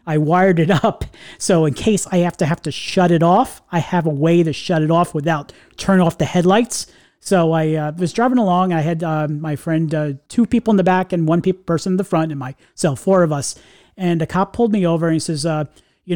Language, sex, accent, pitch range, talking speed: English, male, American, 160-190 Hz, 255 wpm